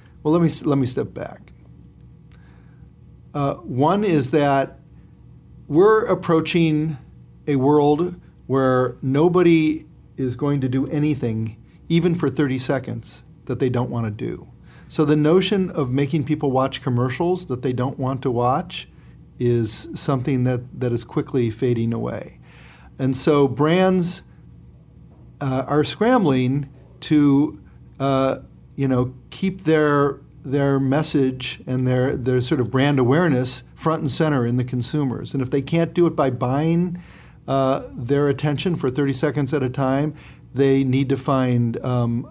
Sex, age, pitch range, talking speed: male, 50-69, 125-155 Hz, 145 wpm